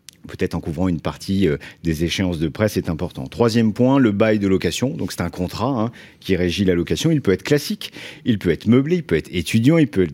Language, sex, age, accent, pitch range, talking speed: French, male, 50-69, French, 90-115 Hz, 245 wpm